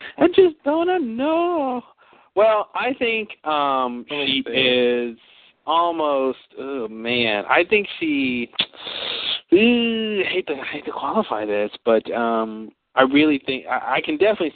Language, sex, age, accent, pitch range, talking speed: English, male, 40-59, American, 105-170 Hz, 130 wpm